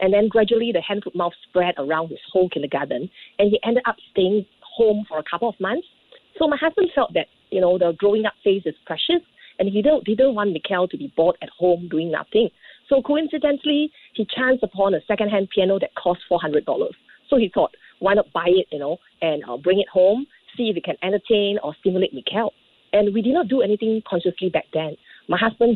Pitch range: 180-240 Hz